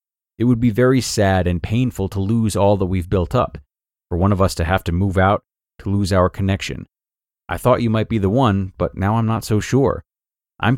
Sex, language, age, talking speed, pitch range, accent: male, English, 30-49, 230 wpm, 95-120 Hz, American